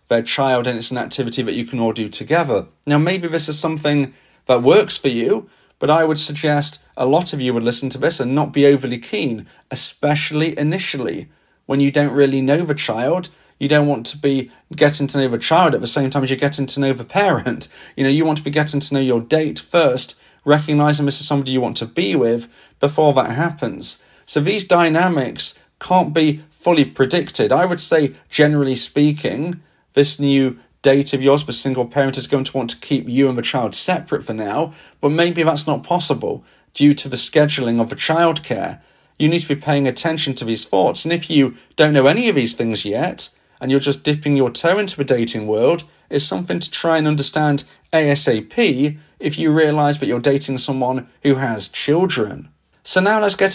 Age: 40-59